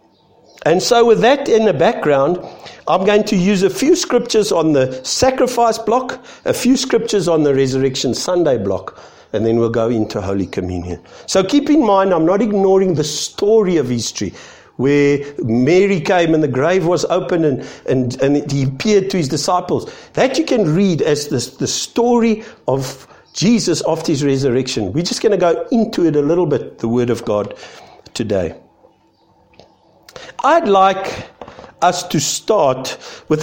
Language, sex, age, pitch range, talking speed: English, male, 50-69, 135-205 Hz, 165 wpm